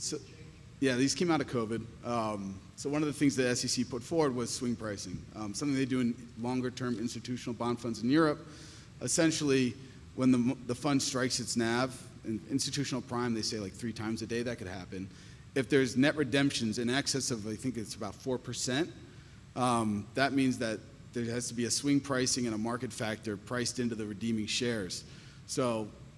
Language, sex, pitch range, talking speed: English, male, 115-135 Hz, 195 wpm